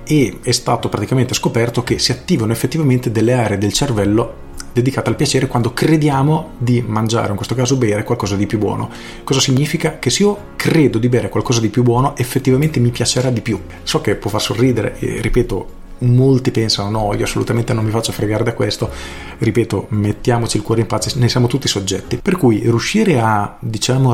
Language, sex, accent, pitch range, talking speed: Italian, male, native, 105-125 Hz, 195 wpm